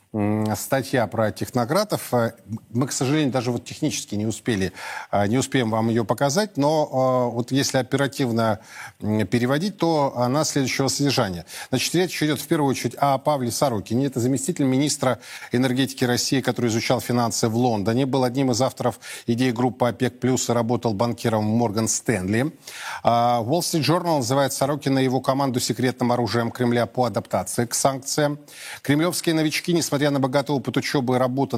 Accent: native